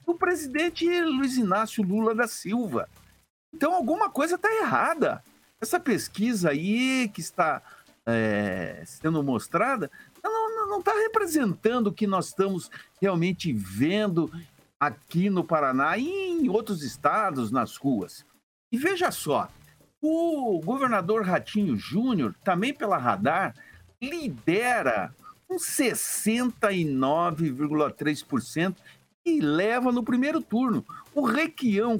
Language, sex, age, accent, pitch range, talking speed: Portuguese, male, 60-79, Brazilian, 180-255 Hz, 110 wpm